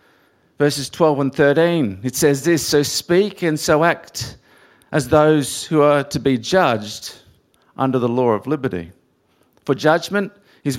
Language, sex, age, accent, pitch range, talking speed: English, male, 50-69, Australian, 130-180 Hz, 150 wpm